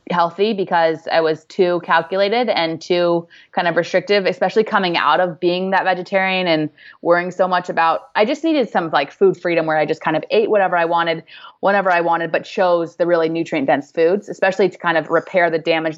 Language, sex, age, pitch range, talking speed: English, female, 20-39, 160-190 Hz, 210 wpm